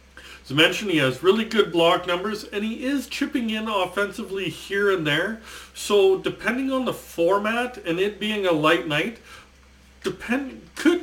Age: 40-59